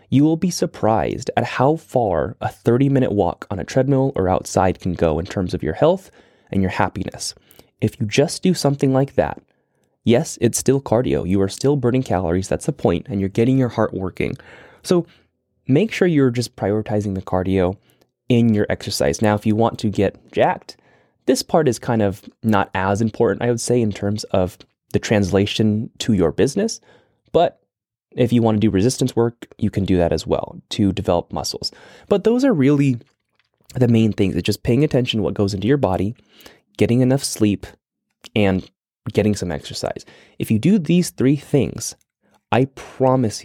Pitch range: 100-135 Hz